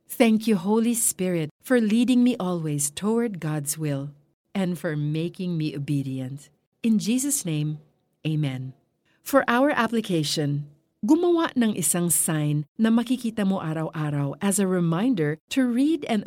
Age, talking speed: 50-69, 135 wpm